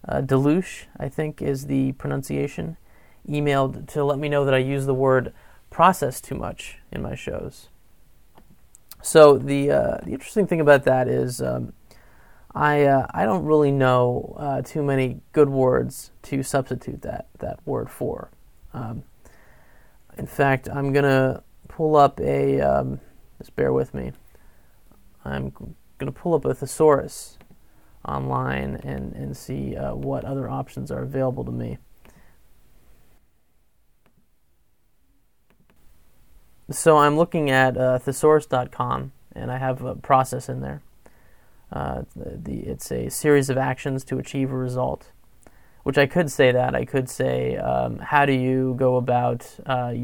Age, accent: 30-49, American